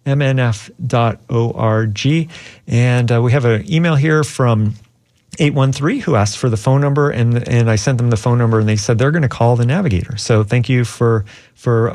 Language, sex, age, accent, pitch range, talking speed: English, male, 40-59, American, 115-135 Hz, 200 wpm